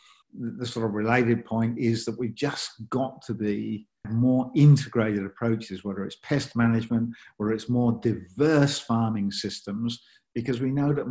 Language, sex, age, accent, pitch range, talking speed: English, male, 50-69, British, 110-135 Hz, 155 wpm